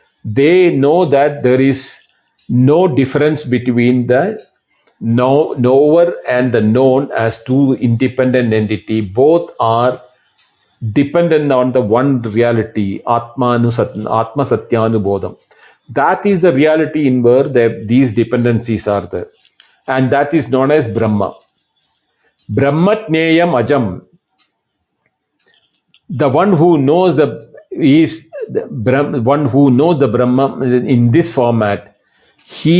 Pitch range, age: 120-150 Hz, 50-69